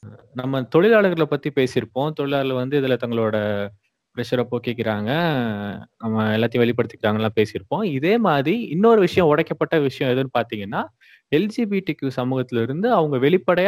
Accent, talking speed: native, 125 wpm